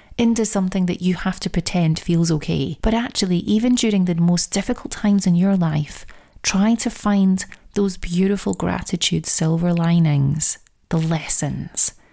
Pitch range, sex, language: 165-200 Hz, female, English